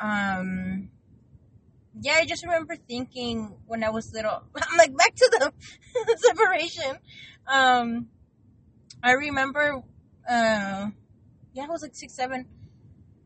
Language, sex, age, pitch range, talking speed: English, female, 20-39, 215-255 Hz, 120 wpm